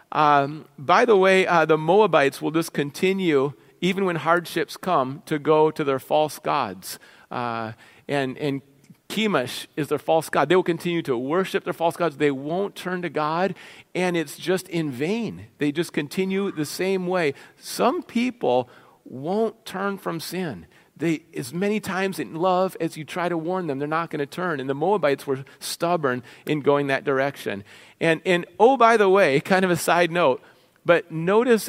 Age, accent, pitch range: 40-59, American, 150-195 Hz